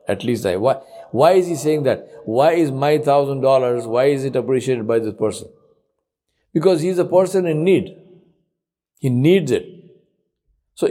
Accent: Indian